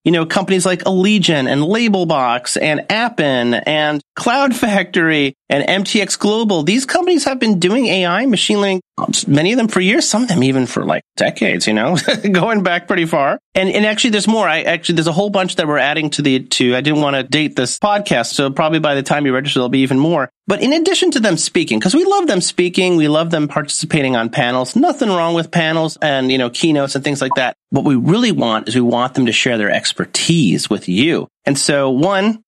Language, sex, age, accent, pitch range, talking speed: English, male, 30-49, American, 135-190 Hz, 225 wpm